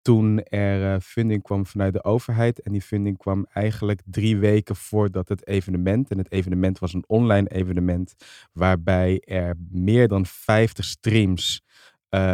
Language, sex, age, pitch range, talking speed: Dutch, male, 20-39, 95-110 Hz, 155 wpm